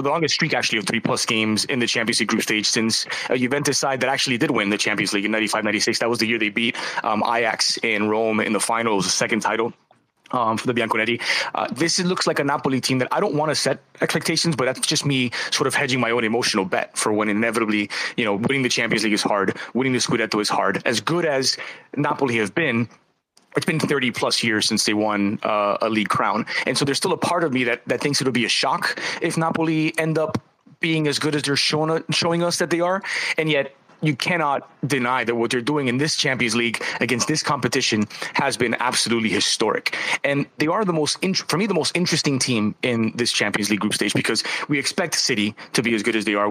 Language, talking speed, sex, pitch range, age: English, 240 wpm, male, 115-150 Hz, 20-39